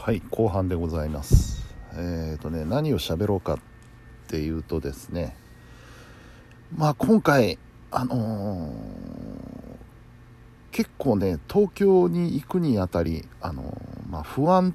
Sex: male